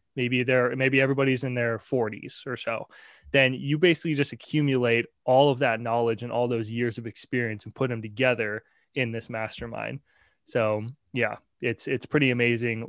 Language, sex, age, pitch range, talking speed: English, male, 20-39, 120-150 Hz, 170 wpm